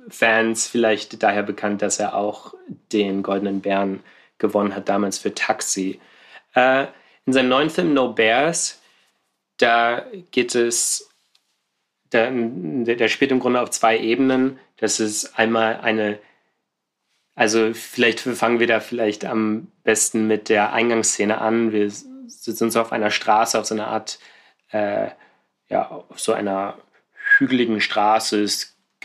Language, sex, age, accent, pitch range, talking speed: German, male, 30-49, German, 105-115 Hz, 145 wpm